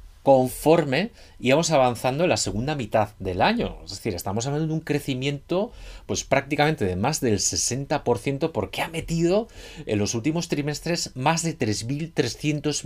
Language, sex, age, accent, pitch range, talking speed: Spanish, male, 30-49, Spanish, 105-155 Hz, 150 wpm